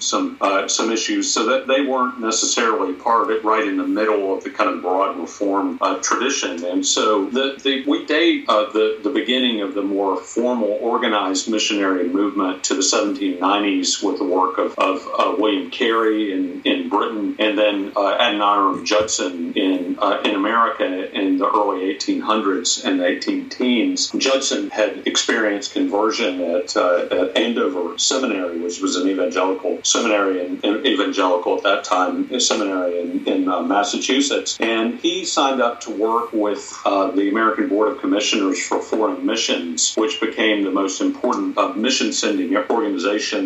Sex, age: male, 50-69